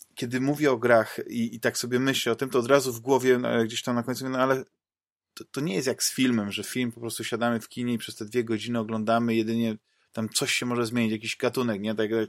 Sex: male